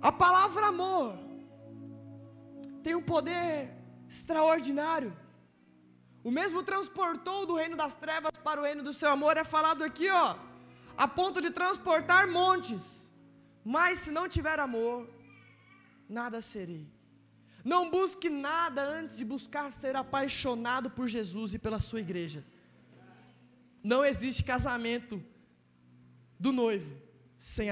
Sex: male